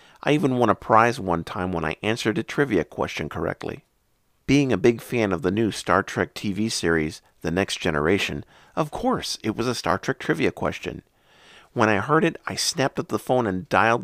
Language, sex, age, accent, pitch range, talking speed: English, male, 50-69, American, 90-120 Hz, 205 wpm